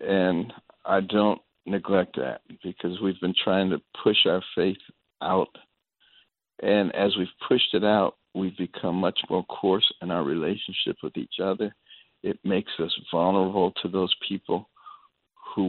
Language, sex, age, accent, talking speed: English, male, 60-79, American, 150 wpm